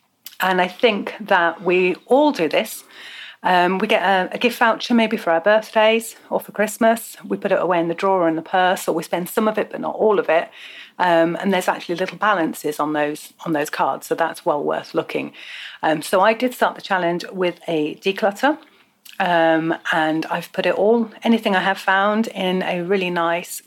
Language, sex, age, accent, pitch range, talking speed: English, female, 40-59, British, 170-225 Hz, 210 wpm